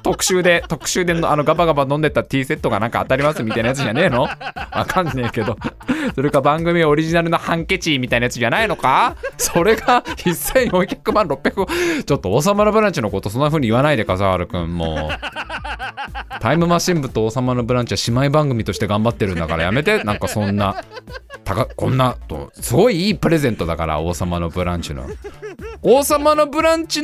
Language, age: Japanese, 20-39